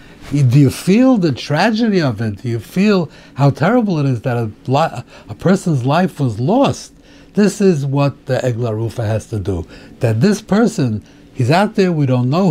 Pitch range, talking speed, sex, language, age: 125-175 Hz, 180 wpm, male, English, 60-79